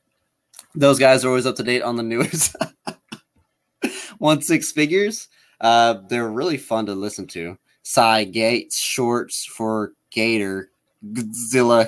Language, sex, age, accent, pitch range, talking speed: English, male, 20-39, American, 105-130 Hz, 130 wpm